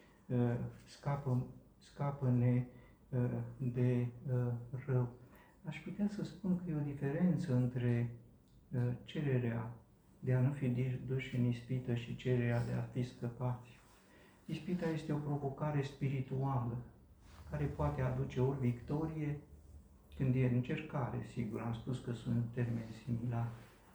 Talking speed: 115 wpm